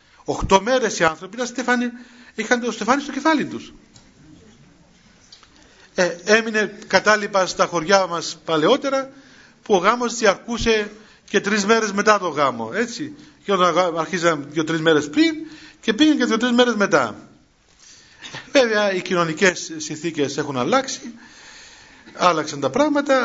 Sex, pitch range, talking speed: male, 175-245 Hz, 135 wpm